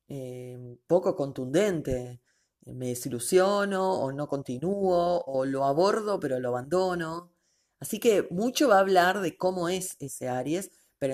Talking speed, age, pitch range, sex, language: 140 wpm, 30-49, 140-185 Hz, female, Spanish